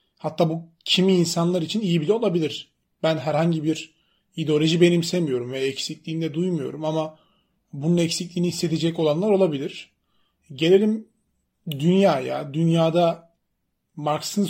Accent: native